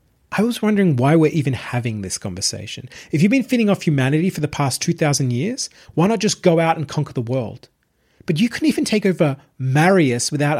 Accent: Australian